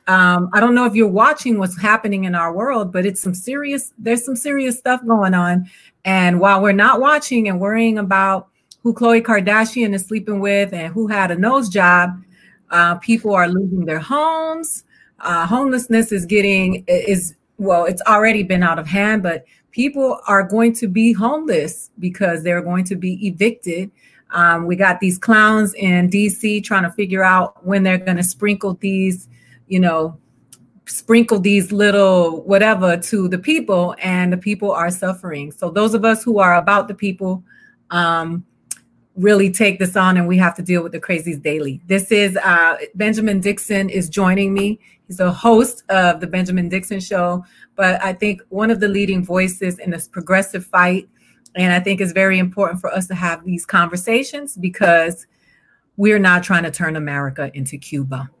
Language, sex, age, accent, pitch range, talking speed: English, female, 30-49, American, 180-215 Hz, 180 wpm